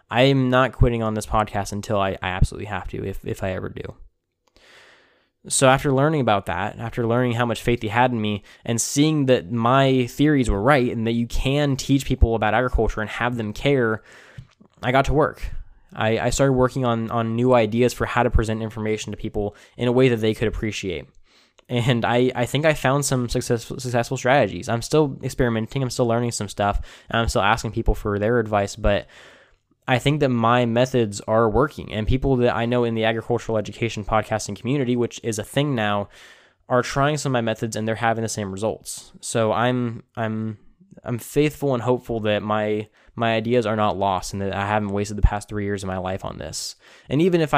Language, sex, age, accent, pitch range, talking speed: English, male, 10-29, American, 105-125 Hz, 215 wpm